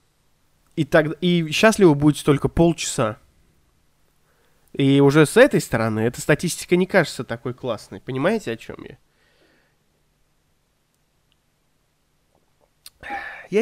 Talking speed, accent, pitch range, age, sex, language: 100 wpm, native, 135-180 Hz, 20-39, male, Russian